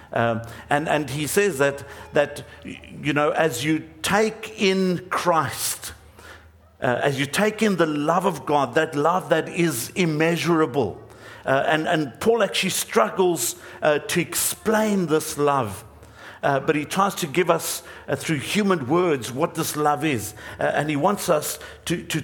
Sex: male